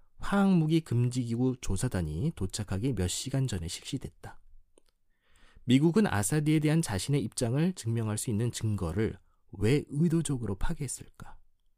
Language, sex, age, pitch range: Korean, male, 40-59, 95-155 Hz